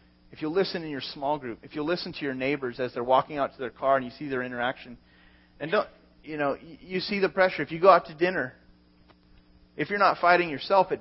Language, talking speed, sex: English, 245 wpm, male